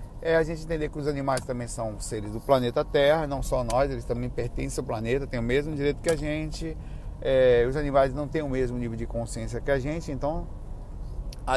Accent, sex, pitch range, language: Brazilian, male, 120-140 Hz, Portuguese